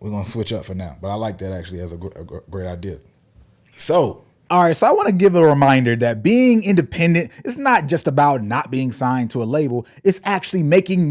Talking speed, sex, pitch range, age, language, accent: 220 wpm, male, 135-190 Hz, 20-39, English, American